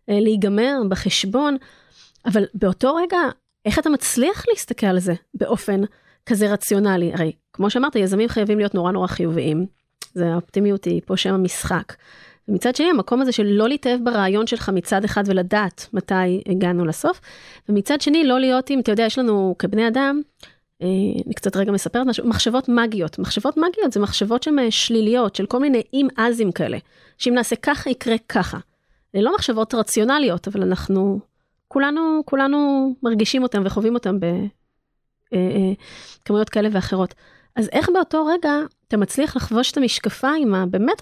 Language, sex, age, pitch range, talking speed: Hebrew, female, 30-49, 195-255 Hz, 145 wpm